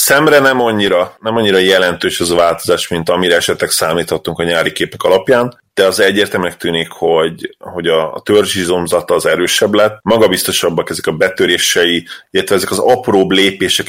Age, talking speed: 30-49, 160 wpm